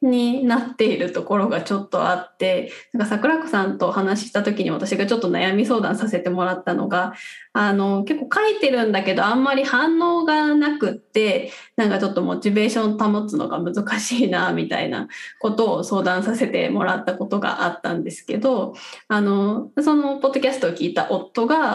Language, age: Japanese, 20-39